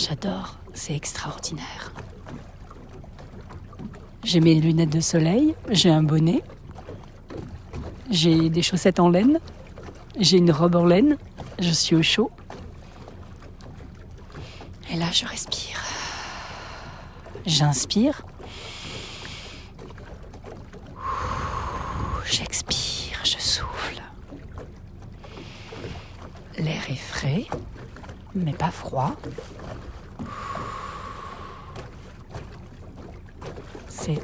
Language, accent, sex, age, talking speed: French, French, female, 40-59, 70 wpm